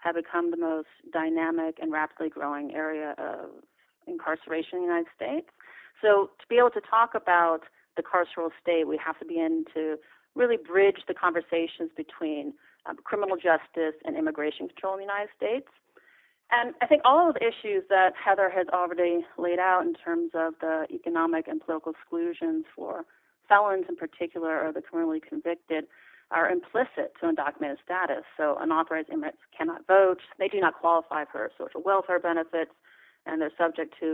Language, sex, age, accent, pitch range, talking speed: English, female, 30-49, American, 165-260 Hz, 170 wpm